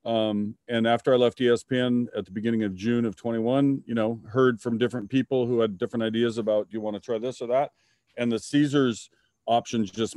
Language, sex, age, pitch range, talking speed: English, male, 40-59, 110-130 Hz, 210 wpm